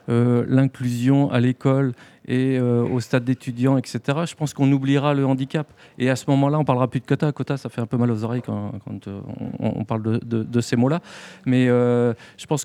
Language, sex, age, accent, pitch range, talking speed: French, male, 40-59, French, 115-135 Hz, 230 wpm